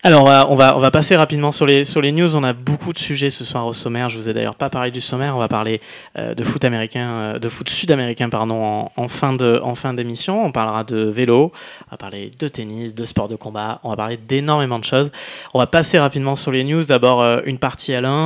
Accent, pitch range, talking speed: French, 120-150 Hz, 270 wpm